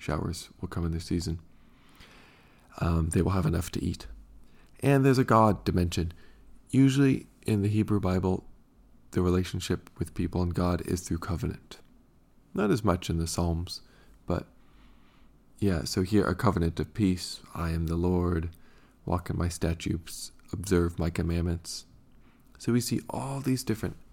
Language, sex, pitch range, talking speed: English, male, 85-100 Hz, 155 wpm